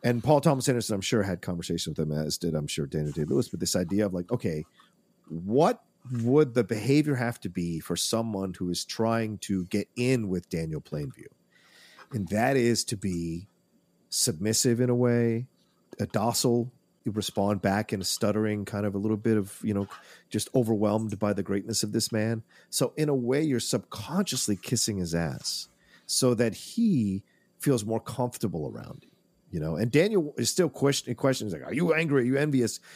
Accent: American